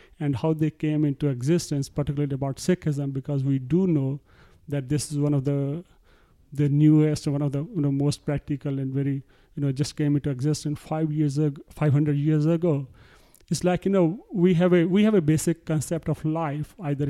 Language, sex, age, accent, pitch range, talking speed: English, male, 30-49, Indian, 145-160 Hz, 205 wpm